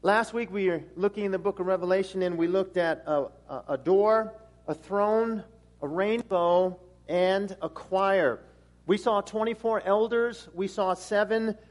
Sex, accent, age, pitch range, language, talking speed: male, American, 50-69, 195-250 Hz, English, 165 wpm